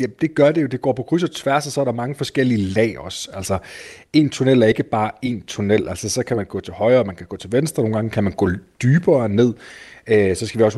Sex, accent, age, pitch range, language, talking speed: male, native, 30-49, 105-130 Hz, Danish, 280 wpm